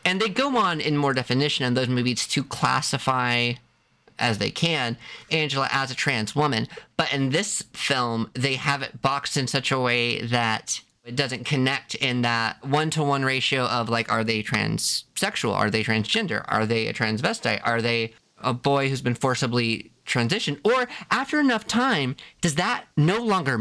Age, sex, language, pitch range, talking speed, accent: 30-49, male, English, 125-160 Hz, 175 wpm, American